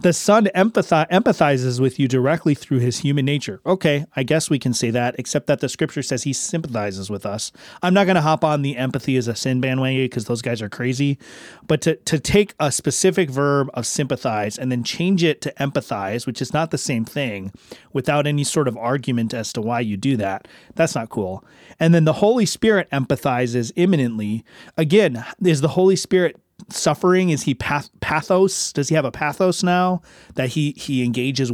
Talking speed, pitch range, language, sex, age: 200 wpm, 125-165 Hz, English, male, 30-49